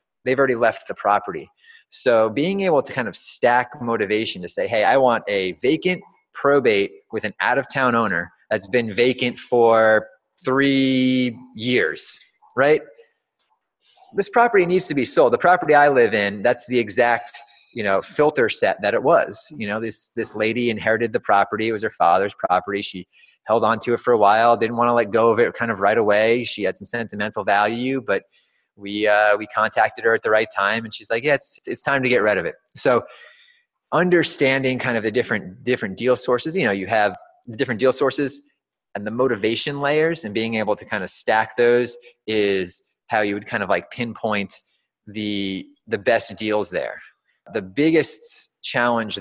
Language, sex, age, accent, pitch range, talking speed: English, male, 30-49, American, 110-140 Hz, 190 wpm